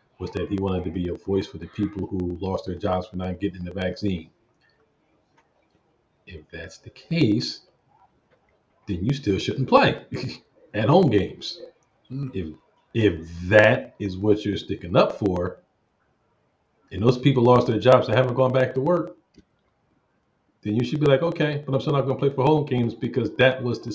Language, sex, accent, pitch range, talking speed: English, male, American, 100-135 Hz, 185 wpm